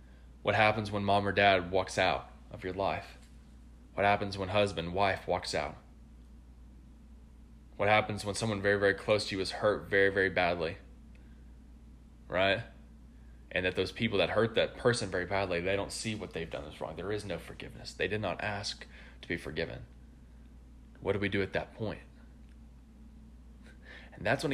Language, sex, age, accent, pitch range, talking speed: English, male, 20-39, American, 65-100 Hz, 175 wpm